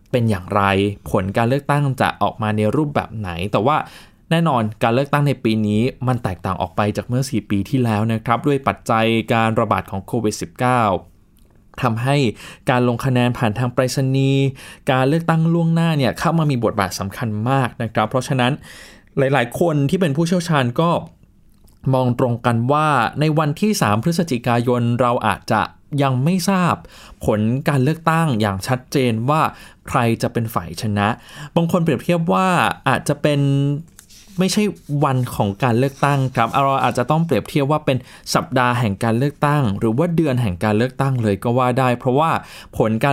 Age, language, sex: 20-39, Thai, male